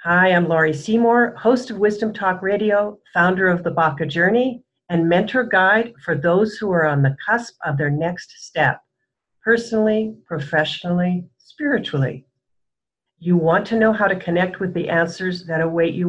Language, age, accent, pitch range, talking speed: English, 60-79, American, 155-205 Hz, 165 wpm